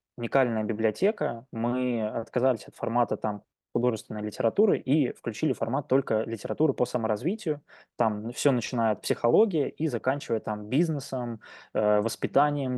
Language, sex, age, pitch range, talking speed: Russian, male, 20-39, 110-135 Hz, 115 wpm